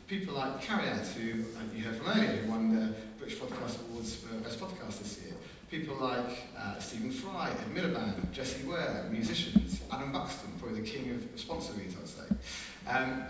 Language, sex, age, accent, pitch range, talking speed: French, male, 40-59, British, 105-160 Hz, 185 wpm